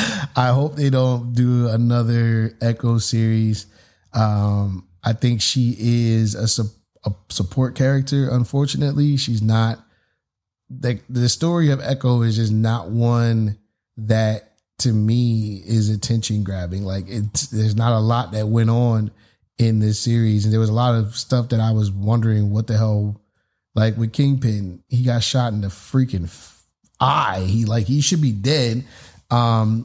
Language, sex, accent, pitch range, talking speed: English, male, American, 110-130 Hz, 155 wpm